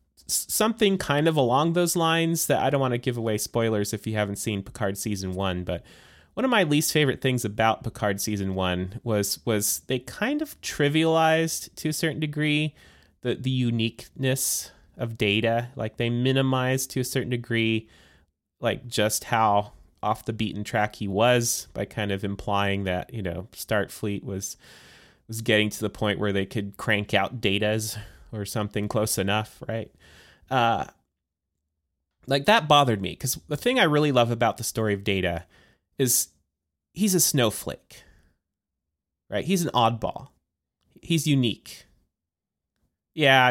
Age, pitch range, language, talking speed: 20-39, 100-135 Hz, English, 160 wpm